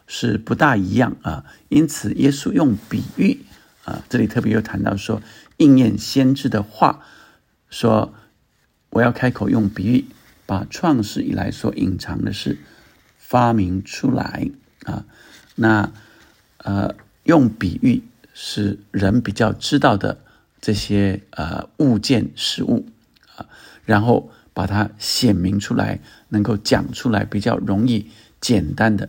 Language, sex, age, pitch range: Chinese, male, 50-69, 100-125 Hz